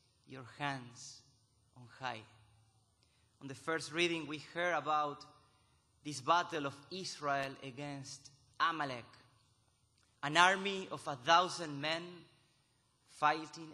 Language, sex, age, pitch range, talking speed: English, male, 30-49, 120-155 Hz, 105 wpm